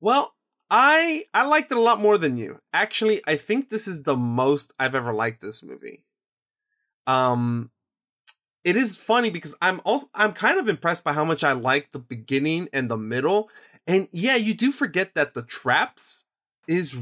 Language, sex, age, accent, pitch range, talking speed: English, male, 20-39, American, 125-180 Hz, 185 wpm